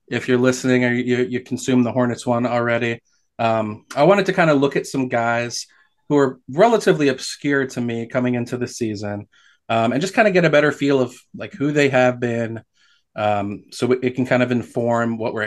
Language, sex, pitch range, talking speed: English, male, 115-140 Hz, 215 wpm